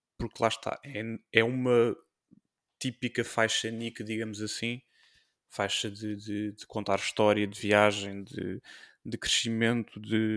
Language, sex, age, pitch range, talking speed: English, male, 20-39, 110-125 Hz, 125 wpm